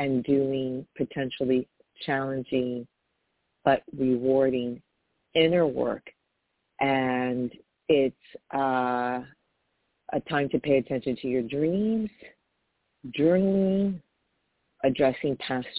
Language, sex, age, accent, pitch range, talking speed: English, female, 40-59, American, 130-160 Hz, 85 wpm